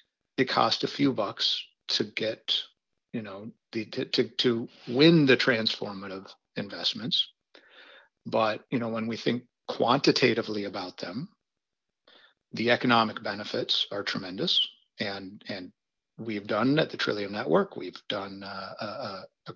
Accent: American